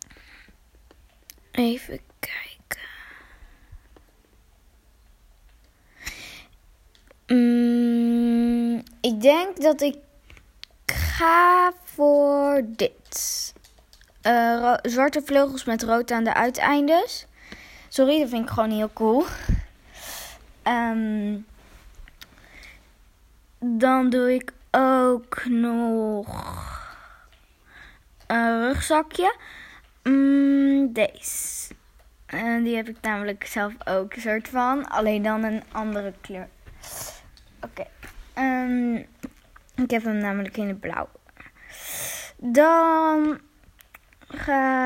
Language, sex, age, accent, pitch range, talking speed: Dutch, female, 20-39, Dutch, 225-280 Hz, 80 wpm